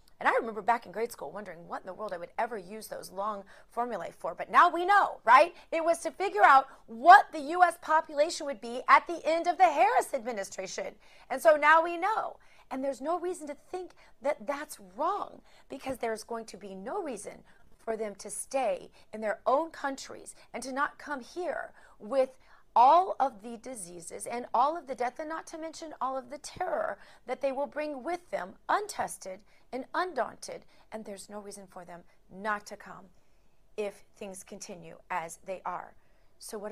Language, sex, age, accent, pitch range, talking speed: English, female, 30-49, American, 215-315 Hz, 200 wpm